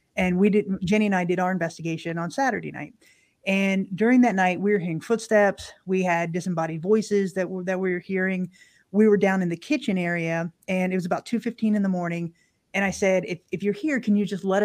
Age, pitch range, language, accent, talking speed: 30-49, 175-205 Hz, English, American, 230 wpm